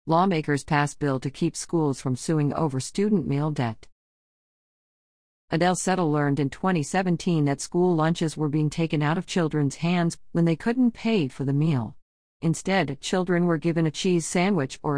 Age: 50-69